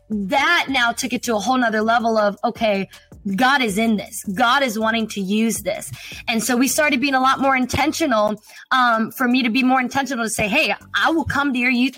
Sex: female